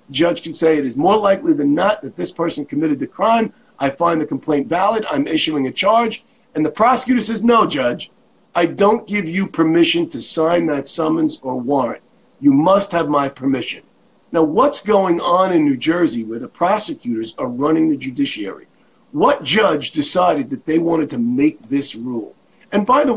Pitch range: 145-245 Hz